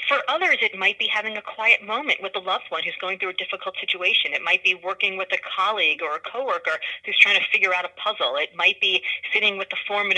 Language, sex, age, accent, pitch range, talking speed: English, female, 30-49, American, 175-215 Hz, 255 wpm